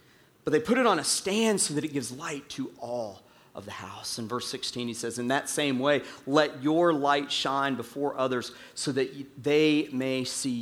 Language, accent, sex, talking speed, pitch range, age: English, American, male, 210 wpm, 115-145 Hz, 40-59